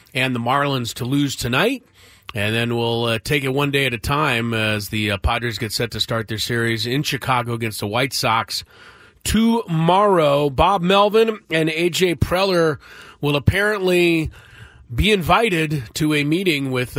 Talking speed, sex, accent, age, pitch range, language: 165 wpm, male, American, 30-49, 110-145 Hz, English